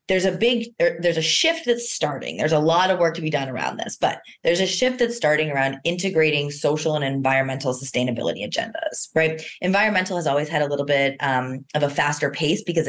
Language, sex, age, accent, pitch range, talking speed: English, female, 20-39, American, 135-165 Hz, 210 wpm